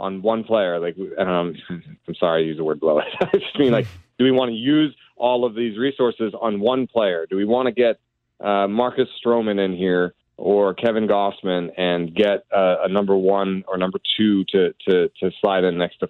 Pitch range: 95-120 Hz